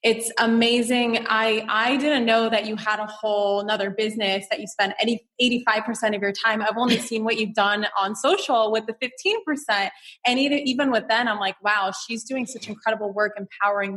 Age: 20-39